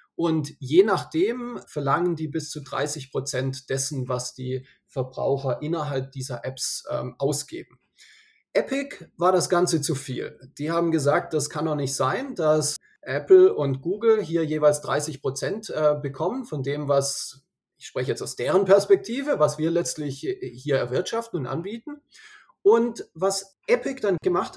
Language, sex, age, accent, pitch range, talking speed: German, male, 30-49, German, 145-195 Hz, 150 wpm